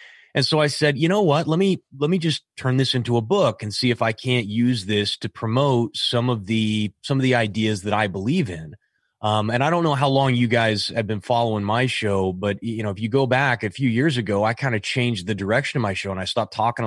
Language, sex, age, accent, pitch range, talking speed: English, male, 30-49, American, 105-130 Hz, 265 wpm